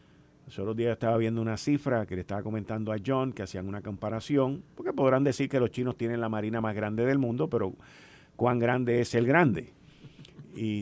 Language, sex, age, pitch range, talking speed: Spanish, male, 50-69, 110-145 Hz, 205 wpm